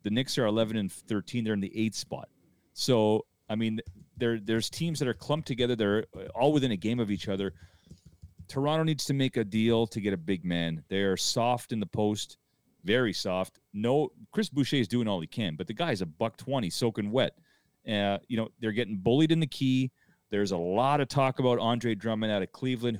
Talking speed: 220 wpm